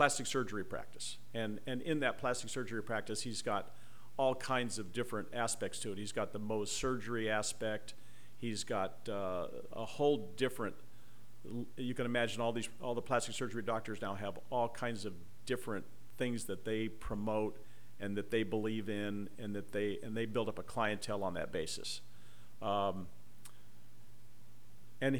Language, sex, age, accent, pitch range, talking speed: English, male, 50-69, American, 105-120 Hz, 165 wpm